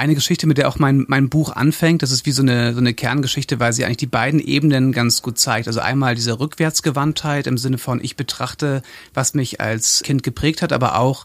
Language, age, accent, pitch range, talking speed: German, 30-49, German, 115-140 Hz, 230 wpm